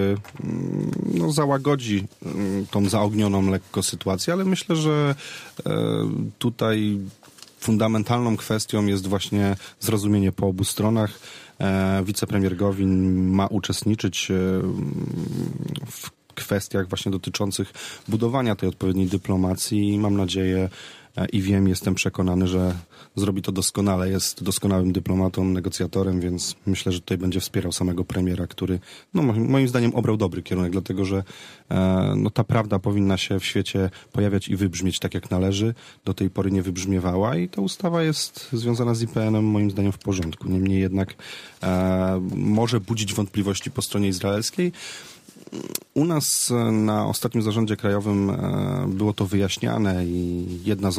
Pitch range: 95-110 Hz